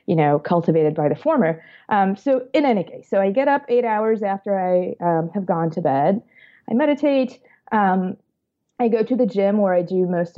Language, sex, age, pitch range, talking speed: English, female, 30-49, 170-195 Hz, 210 wpm